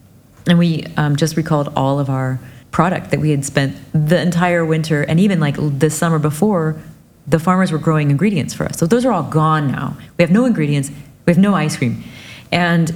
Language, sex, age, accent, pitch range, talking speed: English, female, 30-49, American, 140-170 Hz, 210 wpm